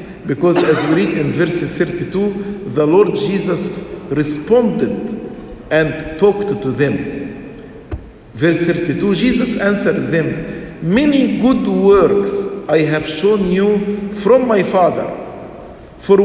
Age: 50-69